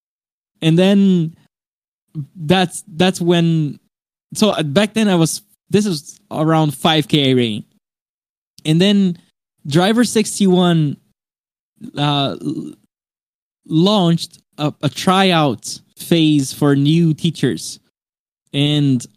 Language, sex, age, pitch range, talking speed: Portuguese, male, 20-39, 140-170 Hz, 90 wpm